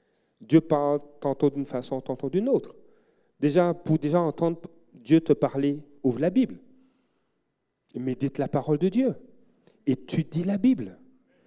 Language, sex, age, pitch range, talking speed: French, male, 40-59, 150-205 Hz, 145 wpm